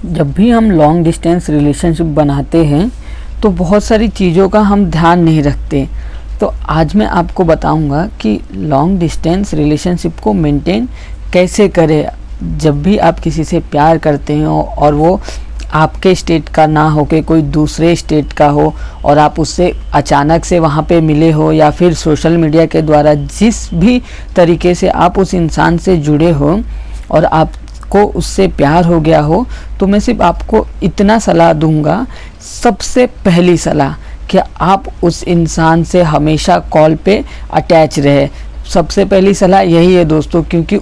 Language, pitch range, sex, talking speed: Hindi, 160-195 Hz, female, 165 wpm